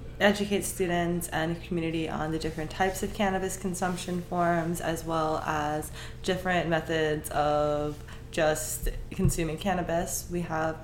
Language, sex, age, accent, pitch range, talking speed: English, female, 20-39, American, 150-180 Hz, 125 wpm